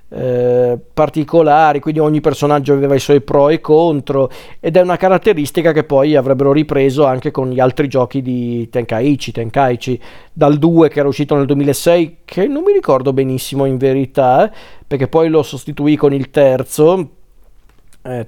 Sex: male